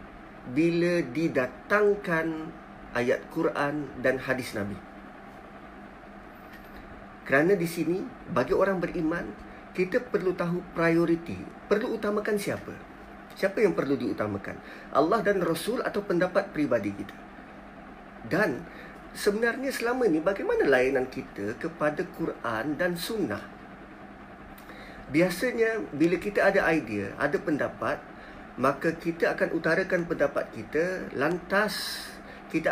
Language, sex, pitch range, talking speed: Malay, male, 160-225 Hz, 105 wpm